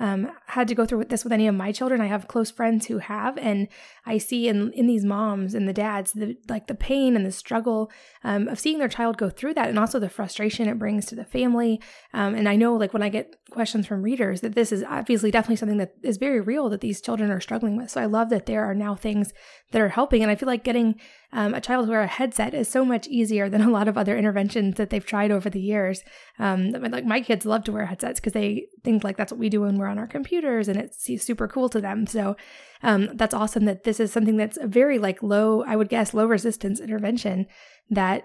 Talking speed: 255 wpm